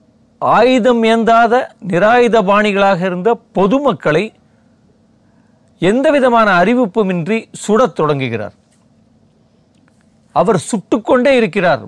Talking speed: 60 wpm